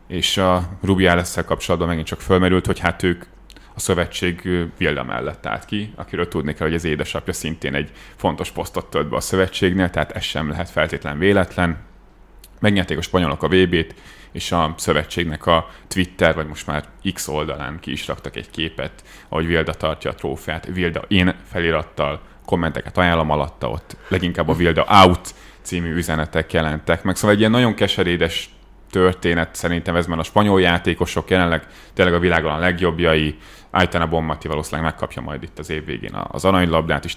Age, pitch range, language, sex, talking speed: 30-49, 80-90 Hz, Hungarian, male, 170 wpm